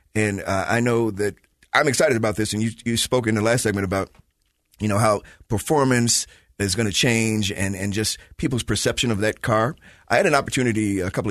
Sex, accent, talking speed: male, American, 210 wpm